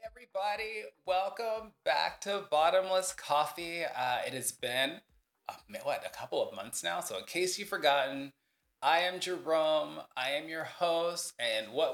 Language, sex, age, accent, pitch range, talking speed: English, male, 30-49, American, 130-185 Hz, 160 wpm